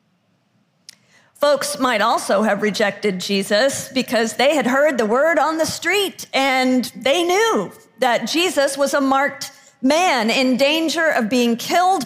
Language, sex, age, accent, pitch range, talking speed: English, female, 50-69, American, 230-310 Hz, 145 wpm